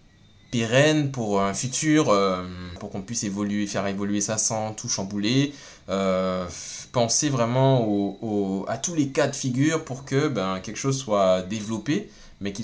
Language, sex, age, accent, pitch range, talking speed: French, male, 20-39, French, 105-170 Hz, 165 wpm